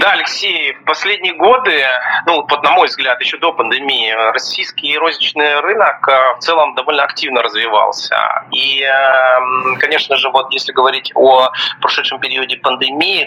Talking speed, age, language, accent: 135 wpm, 30-49, Russian, native